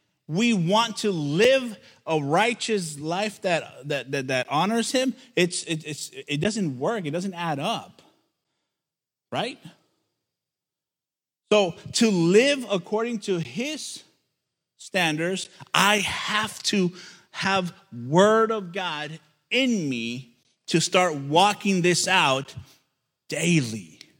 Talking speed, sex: 115 wpm, male